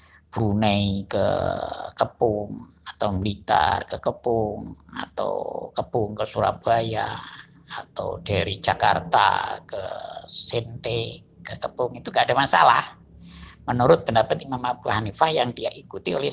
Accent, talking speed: native, 115 wpm